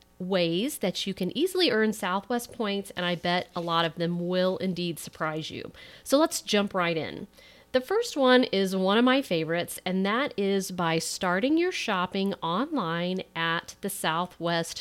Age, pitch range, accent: 40-59, 170-230 Hz, American